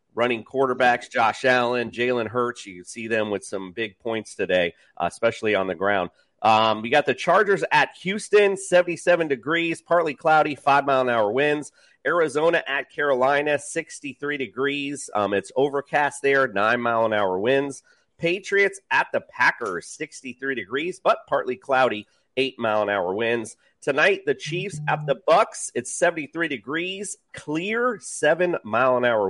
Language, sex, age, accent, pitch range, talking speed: English, male, 40-59, American, 115-160 Hz, 145 wpm